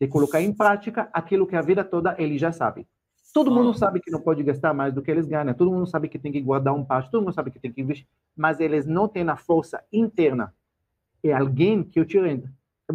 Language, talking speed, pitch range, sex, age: Portuguese, 250 wpm, 140-205 Hz, male, 40-59